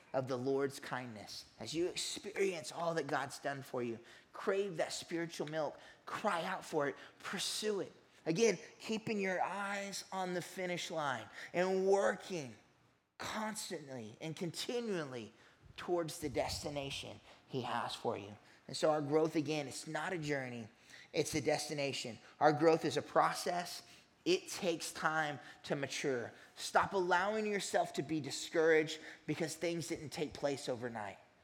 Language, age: English, 20-39